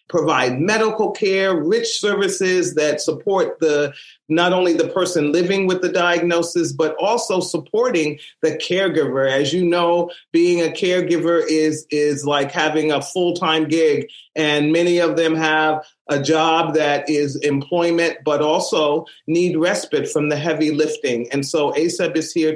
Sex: male